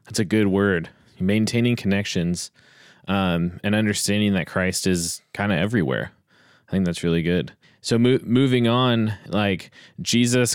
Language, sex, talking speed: English, male, 140 wpm